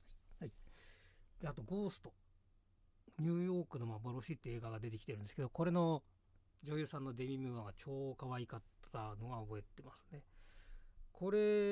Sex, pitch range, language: male, 90-140 Hz, Japanese